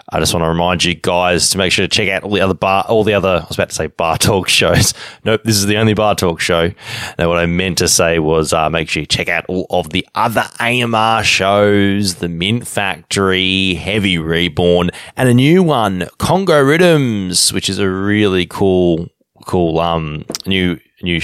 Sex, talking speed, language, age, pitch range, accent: male, 210 wpm, English, 20-39, 85-110 Hz, Australian